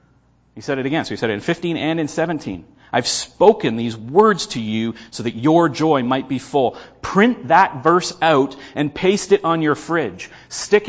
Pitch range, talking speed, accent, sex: 135-175 Hz, 205 wpm, American, male